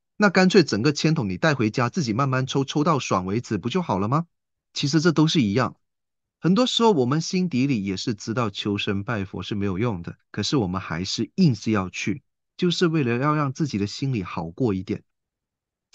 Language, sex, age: Chinese, male, 30-49